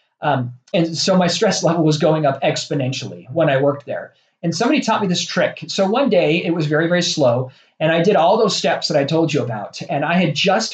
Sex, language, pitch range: male, English, 145-180 Hz